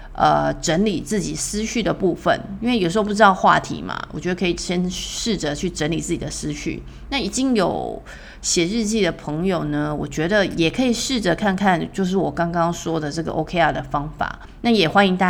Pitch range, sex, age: 155-210 Hz, female, 30-49